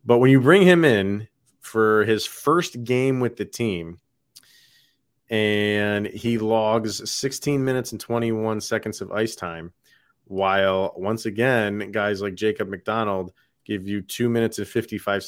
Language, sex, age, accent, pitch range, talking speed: English, male, 30-49, American, 95-125 Hz, 145 wpm